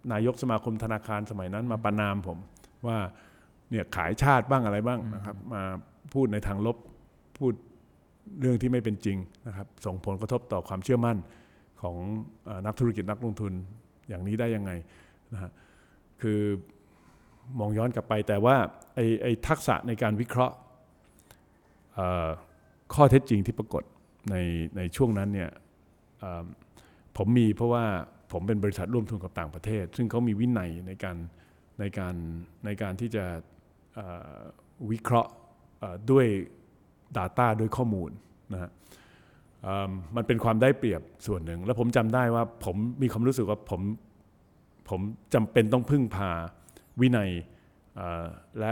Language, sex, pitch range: Thai, male, 90-115 Hz